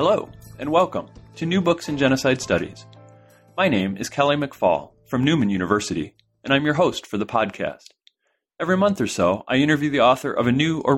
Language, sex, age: English, male, 30-49